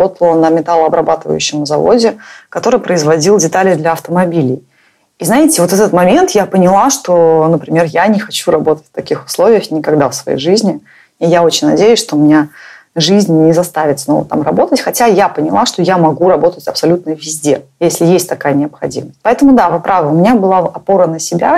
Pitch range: 155-195 Hz